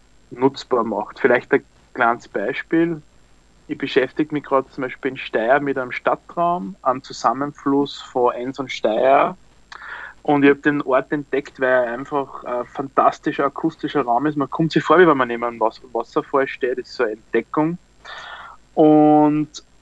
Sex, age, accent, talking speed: male, 30-49, Austrian, 165 wpm